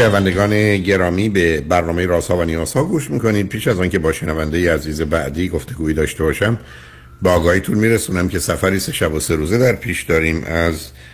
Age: 60-79